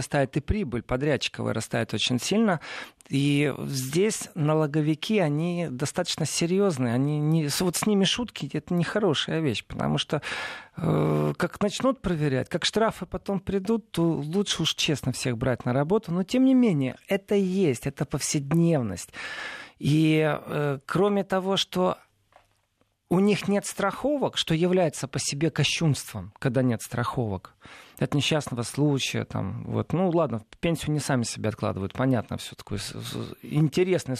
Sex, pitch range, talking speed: male, 130-185 Hz, 140 wpm